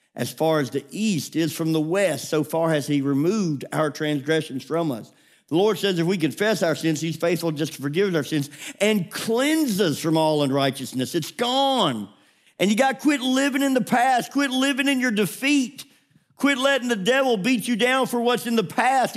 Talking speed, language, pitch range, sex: 210 wpm, English, 150-235 Hz, male